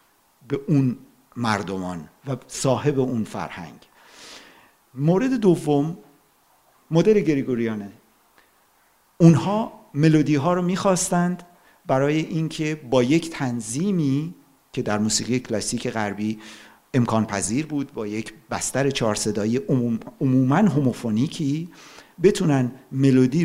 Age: 50-69